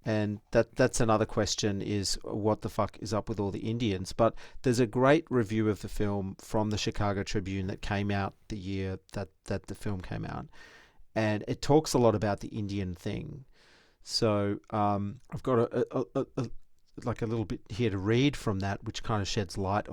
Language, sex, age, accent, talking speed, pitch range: English, male, 40-59, Australian, 210 wpm, 100-115 Hz